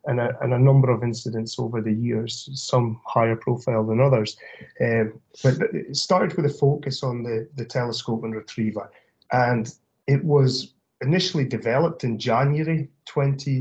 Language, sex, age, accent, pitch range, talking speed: English, male, 30-49, British, 120-145 Hz, 165 wpm